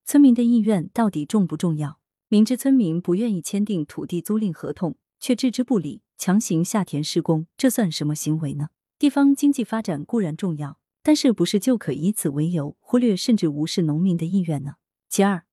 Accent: native